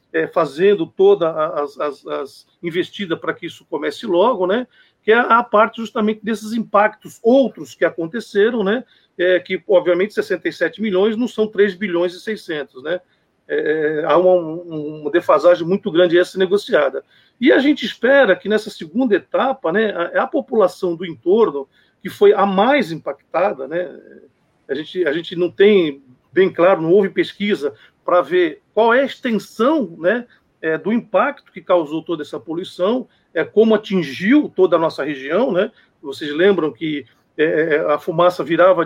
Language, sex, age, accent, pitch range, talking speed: Portuguese, male, 50-69, Brazilian, 175-240 Hz, 160 wpm